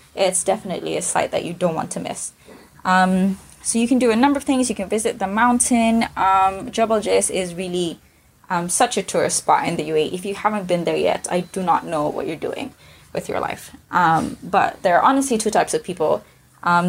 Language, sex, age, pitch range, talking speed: English, female, 20-39, 180-235 Hz, 225 wpm